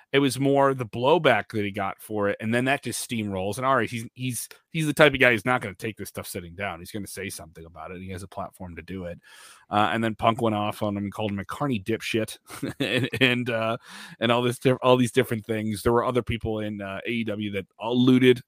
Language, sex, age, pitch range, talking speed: English, male, 30-49, 100-130 Hz, 265 wpm